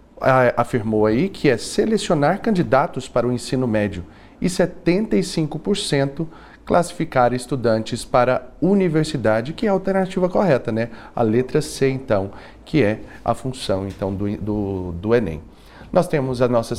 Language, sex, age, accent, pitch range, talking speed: Portuguese, male, 40-59, Brazilian, 110-155 Hz, 140 wpm